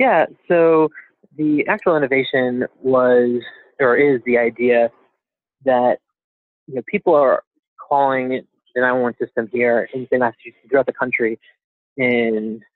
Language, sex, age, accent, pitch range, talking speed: English, male, 20-39, American, 120-135 Hz, 120 wpm